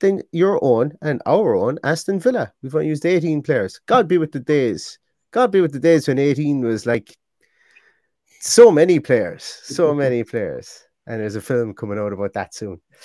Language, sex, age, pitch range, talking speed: English, male, 30-49, 115-150 Hz, 195 wpm